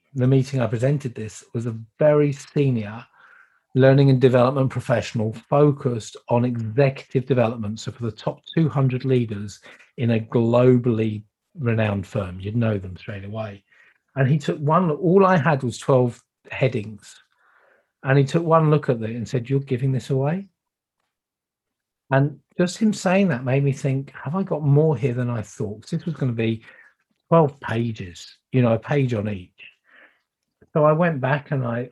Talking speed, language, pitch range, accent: 170 wpm, English, 115-140 Hz, British